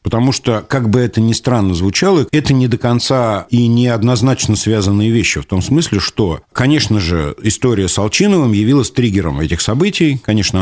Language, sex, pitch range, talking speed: Russian, male, 95-120 Hz, 170 wpm